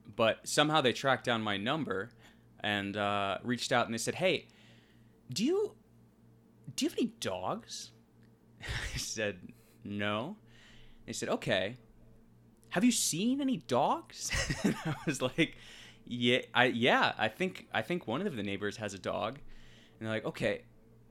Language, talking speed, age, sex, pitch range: English, 155 wpm, 20-39, male, 110-125 Hz